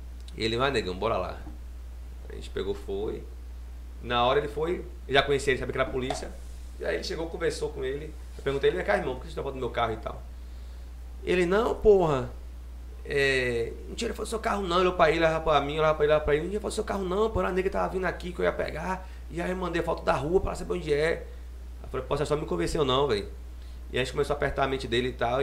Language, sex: Portuguese, male